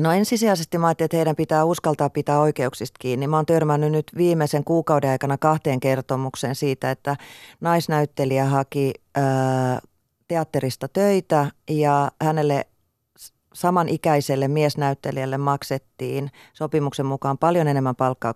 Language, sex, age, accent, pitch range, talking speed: Finnish, female, 30-49, native, 135-170 Hz, 125 wpm